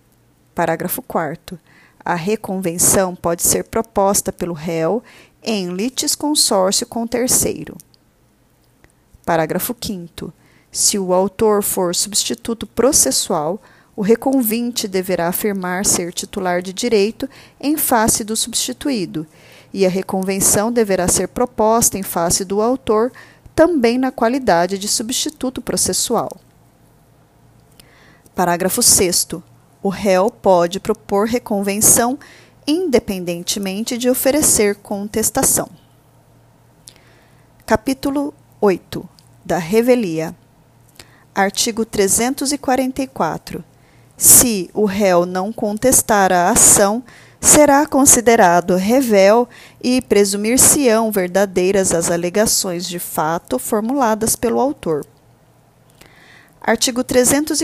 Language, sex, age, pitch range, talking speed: Portuguese, female, 40-59, 185-245 Hz, 90 wpm